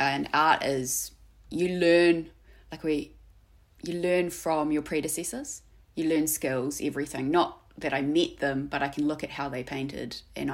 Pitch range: 135-160 Hz